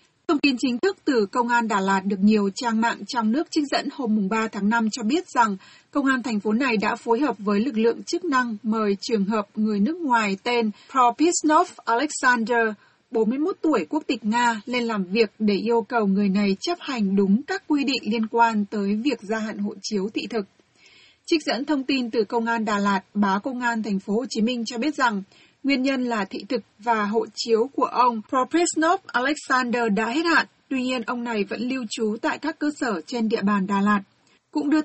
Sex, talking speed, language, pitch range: female, 220 wpm, Vietnamese, 215-260 Hz